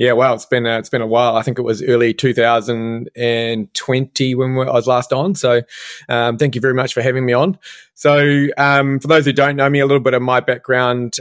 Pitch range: 115-135 Hz